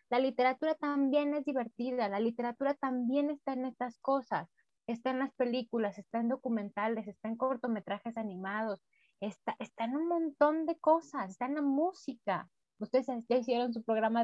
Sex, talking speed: female, 165 wpm